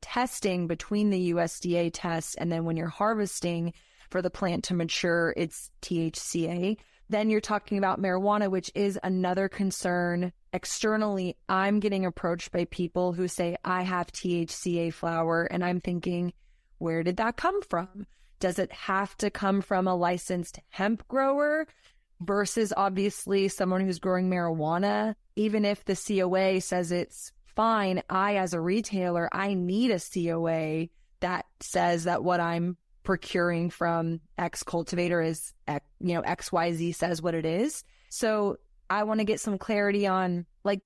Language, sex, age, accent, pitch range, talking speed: English, female, 20-39, American, 175-205 Hz, 150 wpm